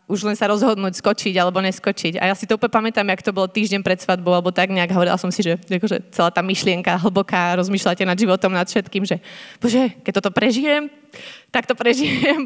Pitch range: 185-215 Hz